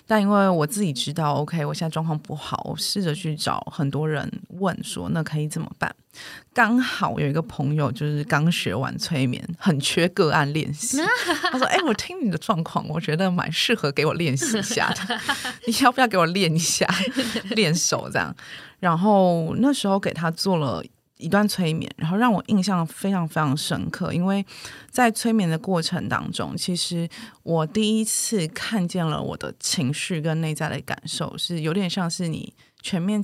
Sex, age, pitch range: female, 20-39, 155-200 Hz